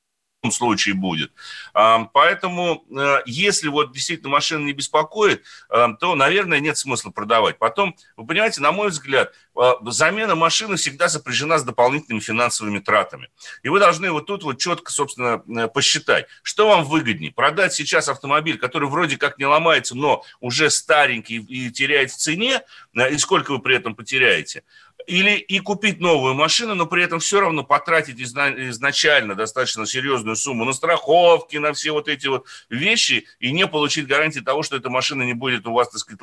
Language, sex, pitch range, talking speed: Russian, male, 125-170 Hz, 160 wpm